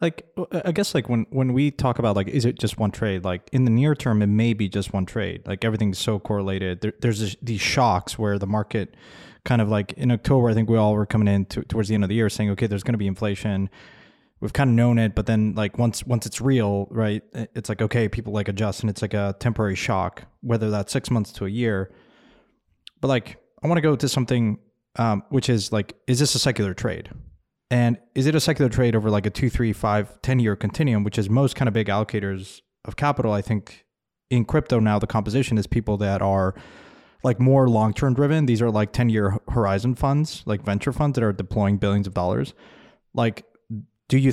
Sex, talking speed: male, 225 wpm